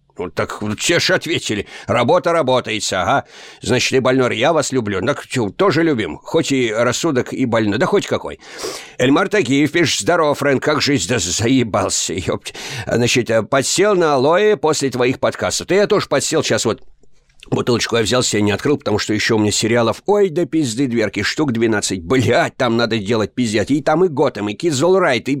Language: Russian